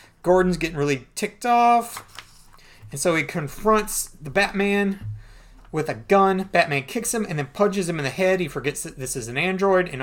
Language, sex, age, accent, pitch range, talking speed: English, male, 30-49, American, 135-195 Hz, 190 wpm